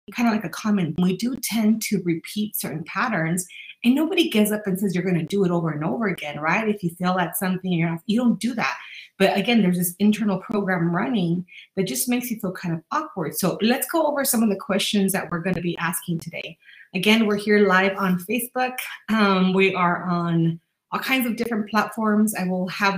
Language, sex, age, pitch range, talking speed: English, female, 30-49, 185-220 Hz, 220 wpm